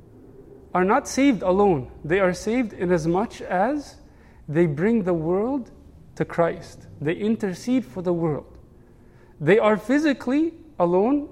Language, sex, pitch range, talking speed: English, male, 150-205 Hz, 140 wpm